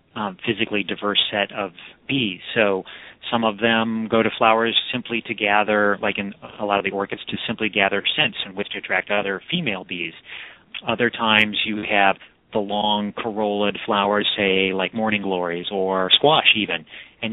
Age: 30-49